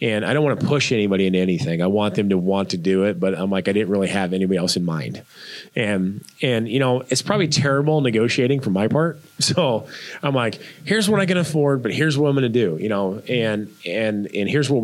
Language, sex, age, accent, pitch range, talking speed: English, male, 30-49, American, 95-135 Hz, 245 wpm